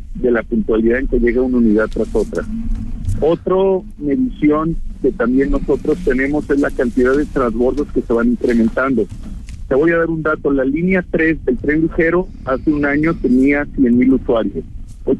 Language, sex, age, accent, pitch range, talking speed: Spanish, male, 50-69, Mexican, 120-155 Hz, 175 wpm